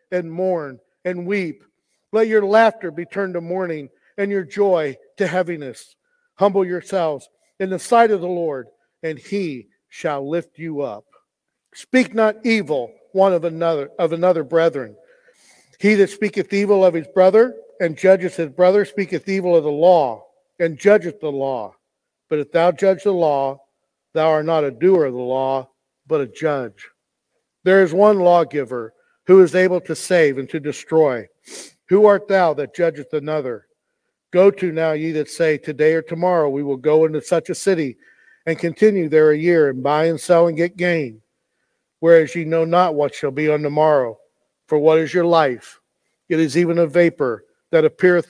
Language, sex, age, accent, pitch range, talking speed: English, male, 50-69, American, 155-190 Hz, 180 wpm